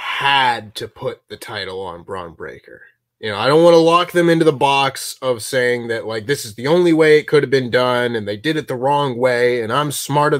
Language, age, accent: English, 20-39, American